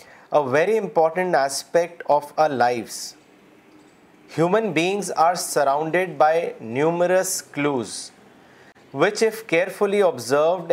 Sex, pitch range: male, 150-185 Hz